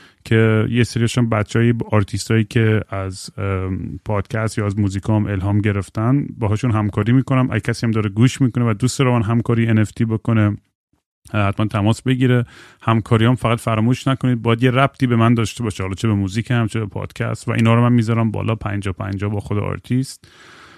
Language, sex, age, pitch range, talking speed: Persian, male, 30-49, 100-120 Hz, 185 wpm